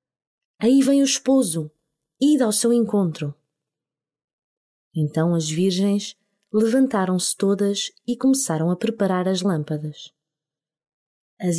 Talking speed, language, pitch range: 105 wpm, Portuguese, 160-220 Hz